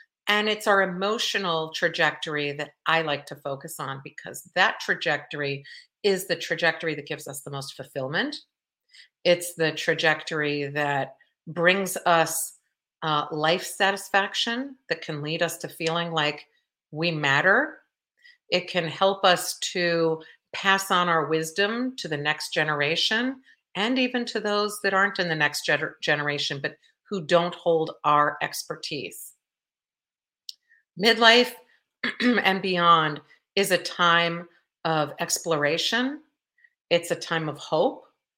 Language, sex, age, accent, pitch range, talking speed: English, female, 50-69, American, 150-195 Hz, 130 wpm